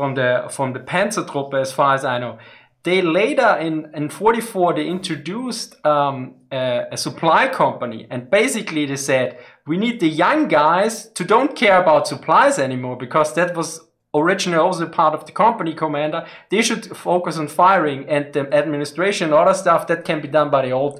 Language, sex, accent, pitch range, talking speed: English, male, German, 145-185 Hz, 175 wpm